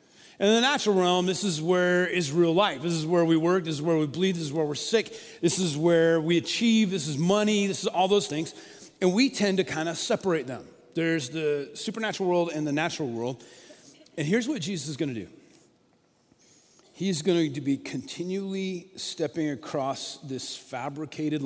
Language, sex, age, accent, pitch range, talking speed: English, male, 40-59, American, 135-180 Hz, 200 wpm